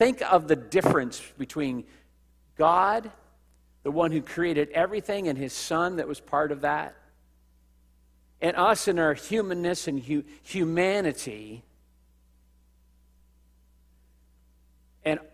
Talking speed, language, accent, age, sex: 105 wpm, English, American, 50-69, male